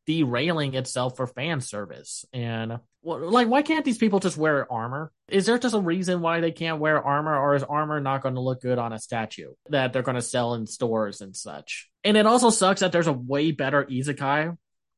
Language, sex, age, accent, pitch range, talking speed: English, male, 20-39, American, 125-160 Hz, 215 wpm